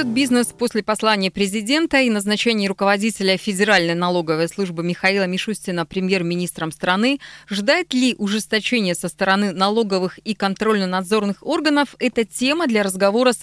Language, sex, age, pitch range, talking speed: Russian, female, 20-39, 190-250 Hz, 125 wpm